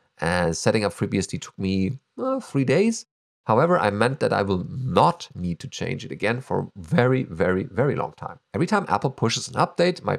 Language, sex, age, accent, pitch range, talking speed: English, male, 40-59, German, 100-160 Hz, 205 wpm